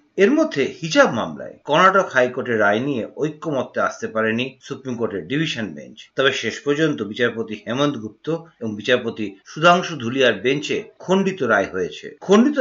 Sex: male